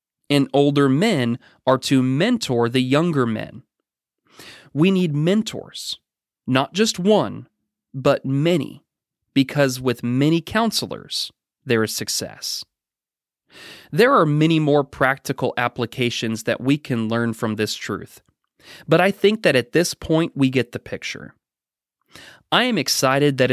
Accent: American